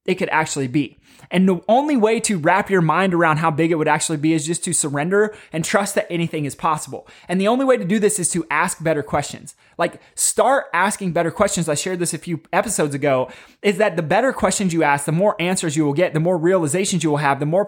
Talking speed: 250 wpm